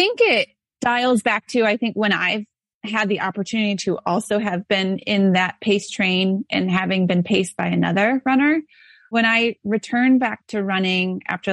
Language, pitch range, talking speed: English, 185-225 Hz, 180 wpm